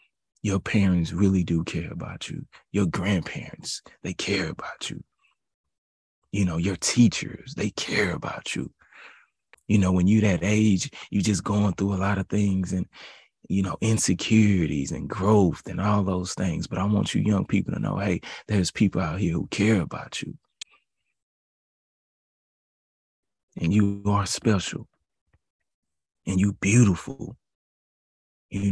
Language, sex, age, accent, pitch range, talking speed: English, male, 30-49, American, 90-105 Hz, 145 wpm